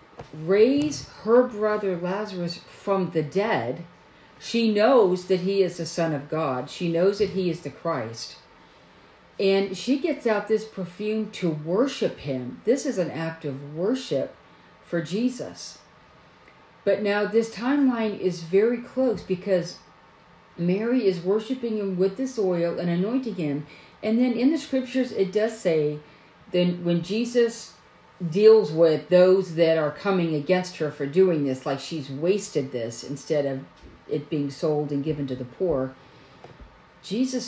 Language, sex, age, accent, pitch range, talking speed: English, female, 50-69, American, 160-215 Hz, 150 wpm